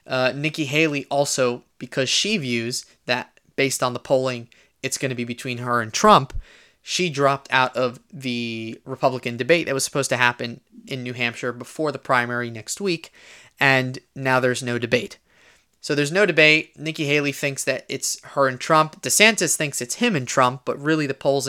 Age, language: 20-39, English